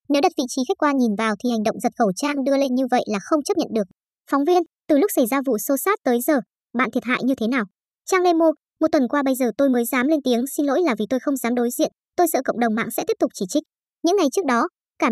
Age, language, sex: 20-39, Vietnamese, male